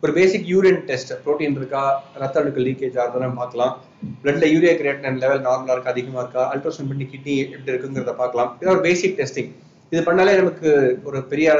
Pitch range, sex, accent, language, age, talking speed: 130-160 Hz, male, Indian, English, 30-49, 110 wpm